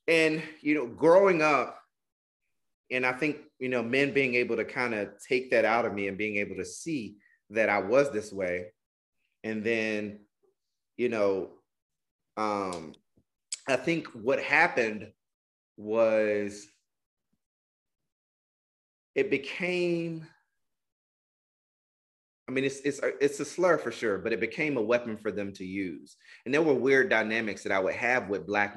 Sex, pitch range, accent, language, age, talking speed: male, 105-150 Hz, American, English, 30-49, 150 wpm